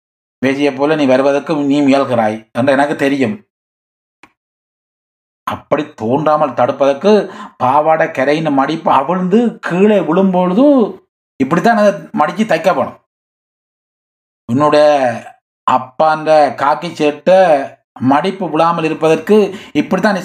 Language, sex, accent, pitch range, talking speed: Tamil, male, native, 140-210 Hz, 90 wpm